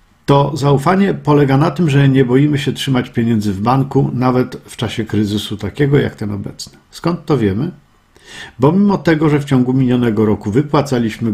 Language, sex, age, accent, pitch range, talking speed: Polish, male, 50-69, native, 115-150 Hz, 175 wpm